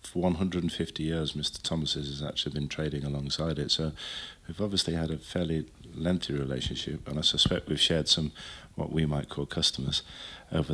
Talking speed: 175 wpm